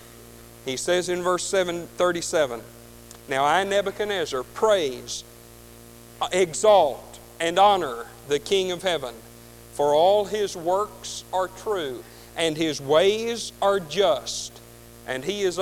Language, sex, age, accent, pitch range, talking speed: English, male, 50-69, American, 115-185 Hz, 115 wpm